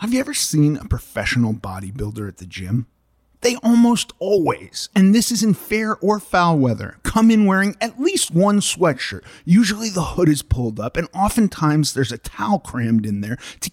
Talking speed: 190 wpm